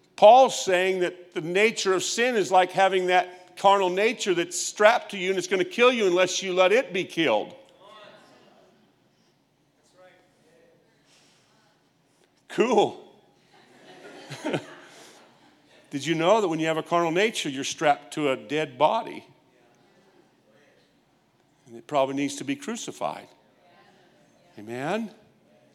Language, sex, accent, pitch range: English, male, American, 120-180 Hz